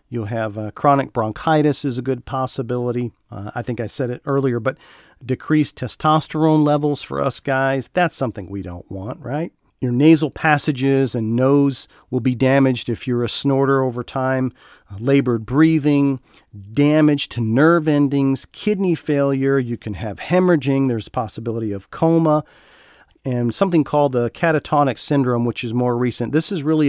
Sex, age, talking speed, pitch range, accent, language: male, 40-59, 165 wpm, 115-145 Hz, American, English